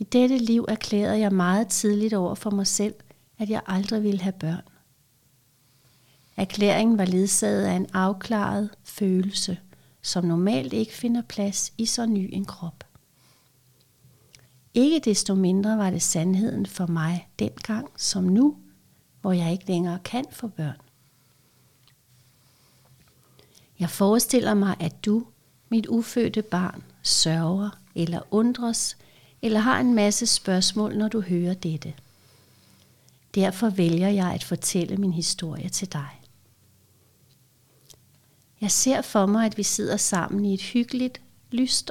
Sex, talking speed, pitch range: female, 135 wpm, 145-210 Hz